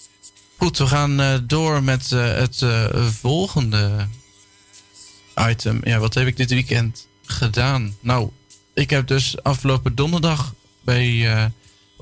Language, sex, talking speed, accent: Dutch, male, 125 wpm, Dutch